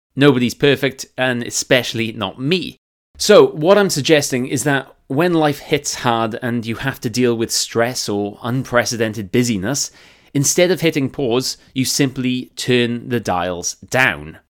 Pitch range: 110-140 Hz